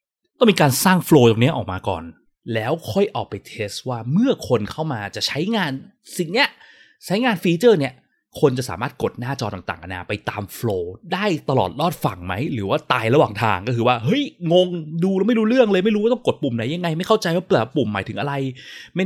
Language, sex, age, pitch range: Thai, male, 20-39, 105-155 Hz